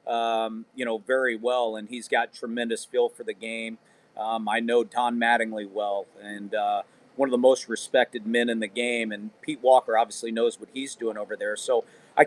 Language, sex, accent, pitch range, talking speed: English, male, American, 120-200 Hz, 205 wpm